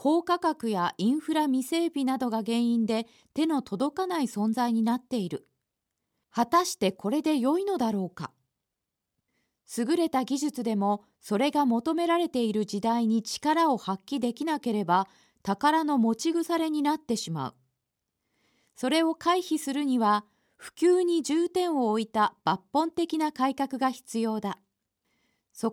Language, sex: Japanese, female